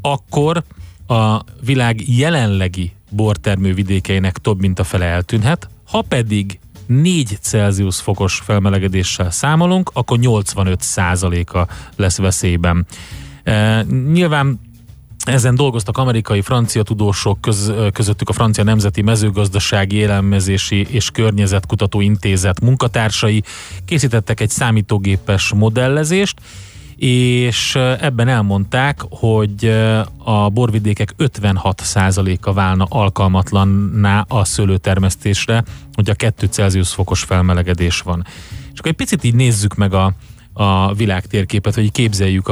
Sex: male